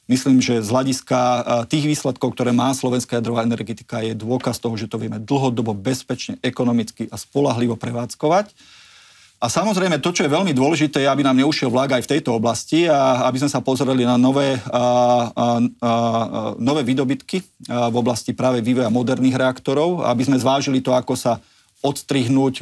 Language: Slovak